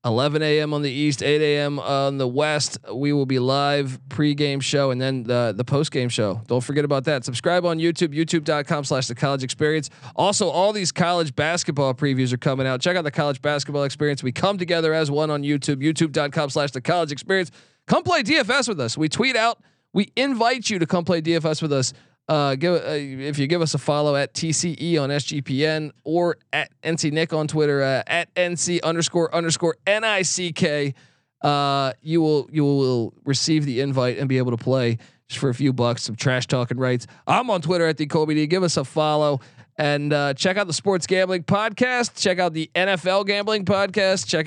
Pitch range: 135-175 Hz